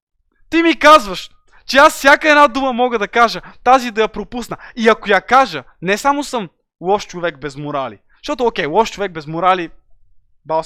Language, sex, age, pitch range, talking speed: Bulgarian, male, 20-39, 145-215 Hz, 190 wpm